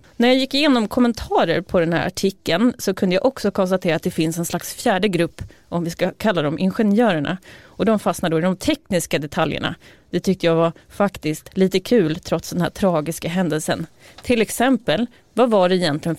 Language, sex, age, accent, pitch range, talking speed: Swedish, female, 30-49, native, 170-230 Hz, 195 wpm